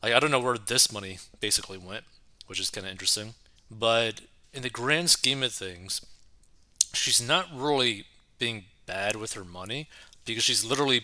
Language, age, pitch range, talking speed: English, 20-39, 100-120 Hz, 170 wpm